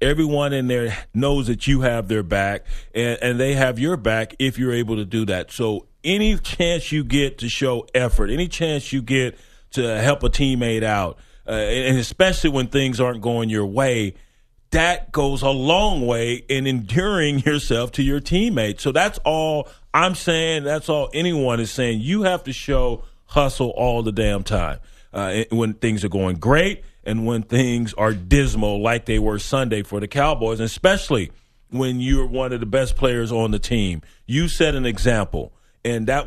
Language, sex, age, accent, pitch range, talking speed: English, male, 40-59, American, 115-140 Hz, 185 wpm